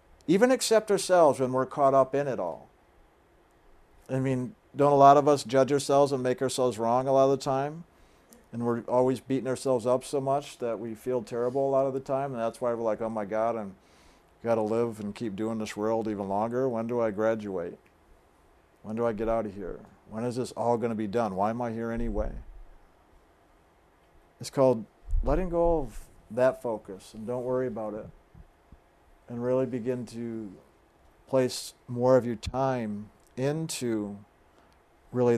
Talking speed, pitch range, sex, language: 190 wpm, 110-135 Hz, male, English